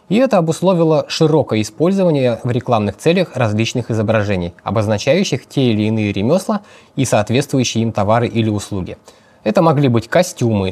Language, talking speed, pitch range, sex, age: Russian, 140 wpm, 110-155 Hz, male, 20-39